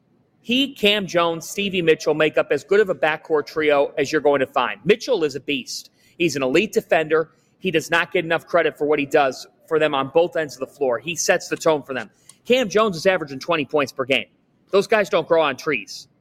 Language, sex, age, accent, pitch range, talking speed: English, male, 30-49, American, 155-205 Hz, 235 wpm